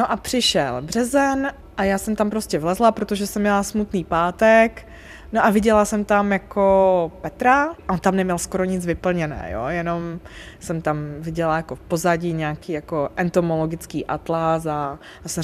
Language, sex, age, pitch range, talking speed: Czech, female, 20-39, 175-225 Hz, 170 wpm